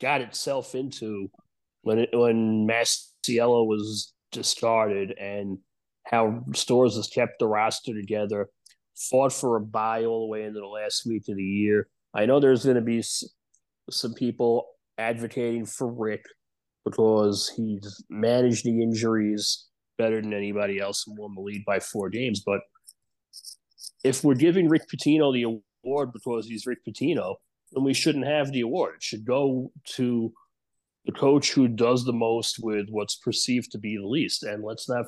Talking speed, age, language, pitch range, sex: 165 wpm, 30-49, English, 105-125 Hz, male